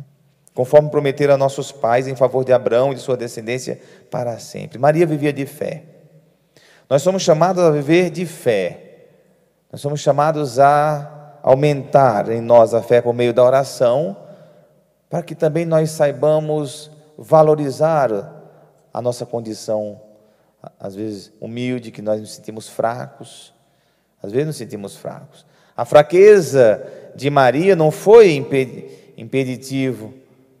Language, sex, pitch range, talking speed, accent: Portuguese, male, 115-155 Hz, 130 wpm, Brazilian